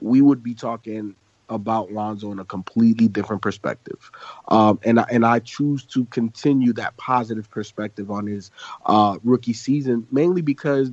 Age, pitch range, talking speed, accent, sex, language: 30-49, 115-135 Hz, 155 wpm, American, male, English